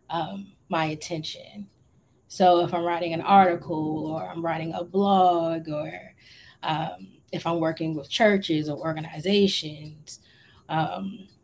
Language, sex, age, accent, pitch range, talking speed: English, female, 30-49, American, 155-180 Hz, 125 wpm